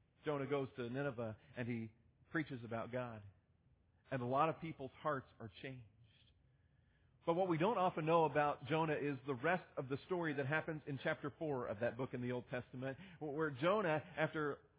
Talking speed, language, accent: 185 wpm, English, American